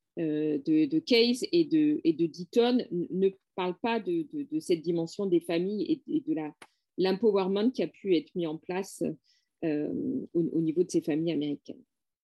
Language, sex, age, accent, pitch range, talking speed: French, female, 40-59, French, 180-265 Hz, 185 wpm